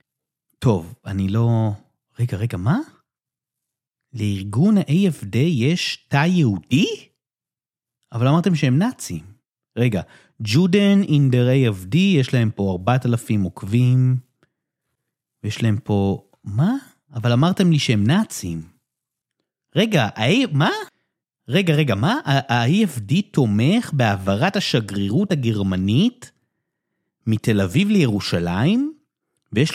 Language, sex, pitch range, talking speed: Hebrew, male, 115-175 Hz, 95 wpm